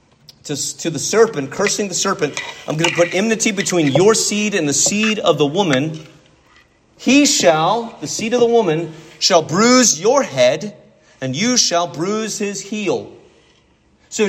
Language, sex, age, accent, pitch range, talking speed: English, male, 40-59, American, 170-255 Hz, 165 wpm